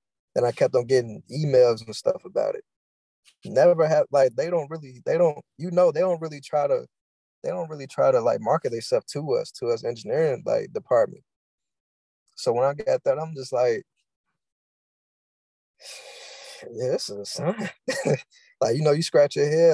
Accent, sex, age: American, male, 20-39